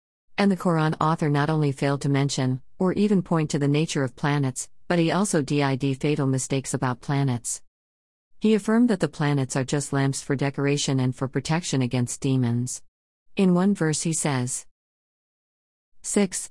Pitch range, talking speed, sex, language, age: 130-165 Hz, 165 wpm, female, Arabic, 50-69